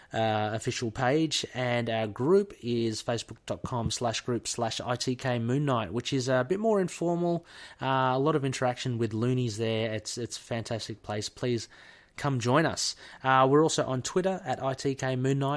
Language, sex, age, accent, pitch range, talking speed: English, male, 30-49, Australian, 115-135 Hz, 165 wpm